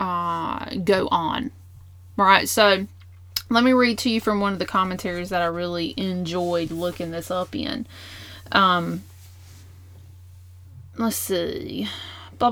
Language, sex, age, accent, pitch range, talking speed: English, female, 30-49, American, 170-215 Hz, 135 wpm